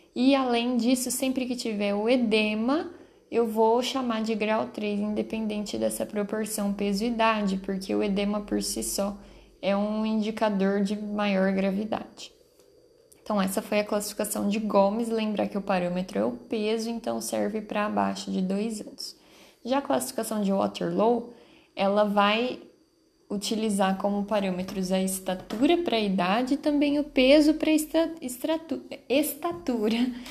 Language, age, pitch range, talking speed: Portuguese, 10-29, 200-255 Hz, 145 wpm